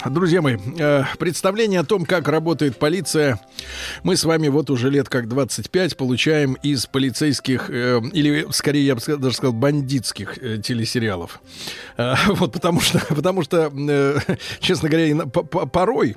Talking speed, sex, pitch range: 130 wpm, male, 125-165 Hz